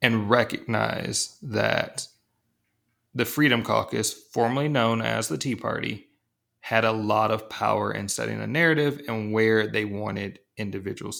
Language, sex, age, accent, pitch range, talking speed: English, male, 30-49, American, 110-130 Hz, 140 wpm